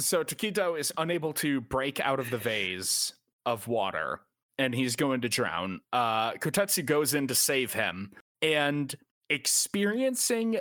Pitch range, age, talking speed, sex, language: 130-180 Hz, 30-49, 145 wpm, male, English